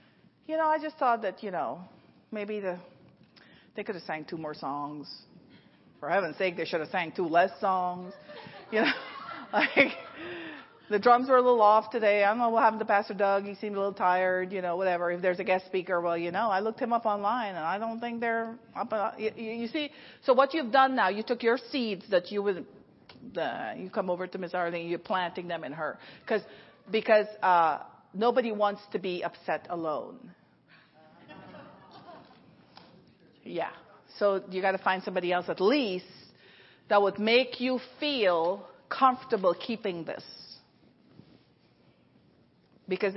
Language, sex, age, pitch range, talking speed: English, female, 40-59, 180-230 Hz, 180 wpm